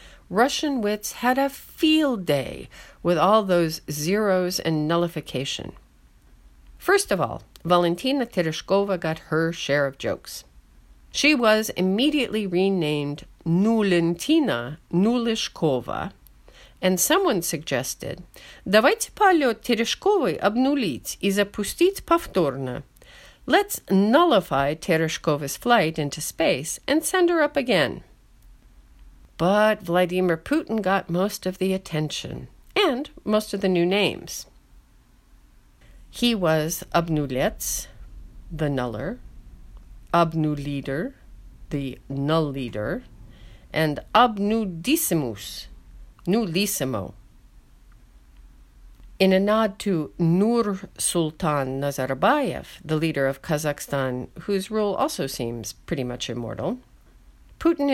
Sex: female